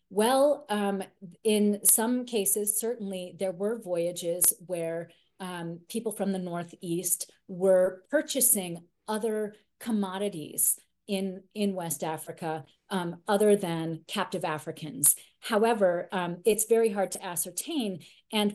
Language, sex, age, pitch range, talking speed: English, female, 40-59, 165-205 Hz, 115 wpm